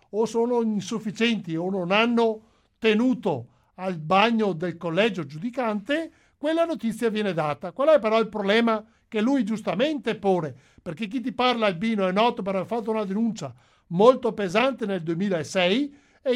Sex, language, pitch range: male, Italian, 190-240 Hz